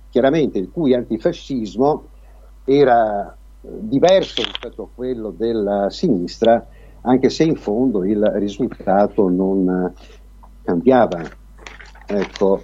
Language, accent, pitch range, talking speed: Italian, native, 95-130 Hz, 100 wpm